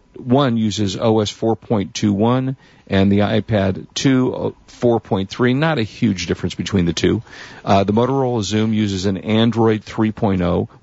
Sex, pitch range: male, 95-115 Hz